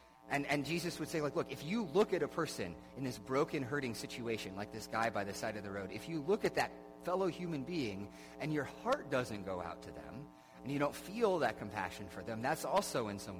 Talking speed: 245 wpm